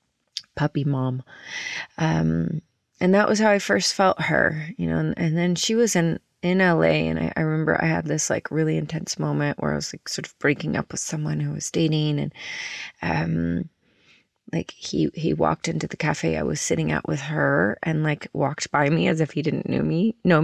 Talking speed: 210 wpm